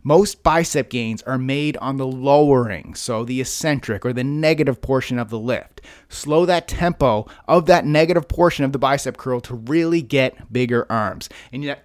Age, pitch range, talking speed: 30-49, 125-155 Hz, 180 wpm